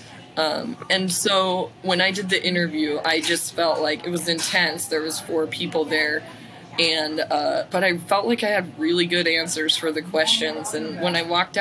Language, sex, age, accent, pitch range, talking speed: English, female, 20-39, American, 160-185 Hz, 195 wpm